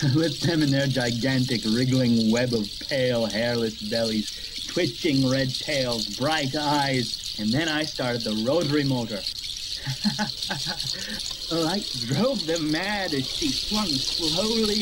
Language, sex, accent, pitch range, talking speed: English, male, American, 110-150 Hz, 130 wpm